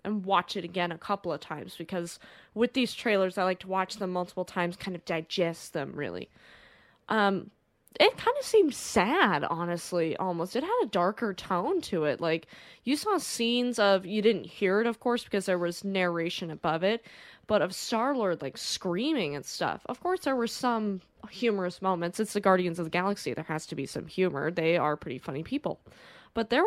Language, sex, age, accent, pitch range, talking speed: English, female, 20-39, American, 175-225 Hz, 200 wpm